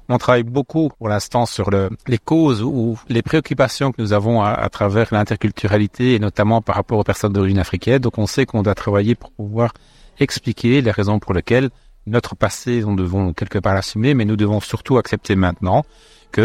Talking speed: 200 wpm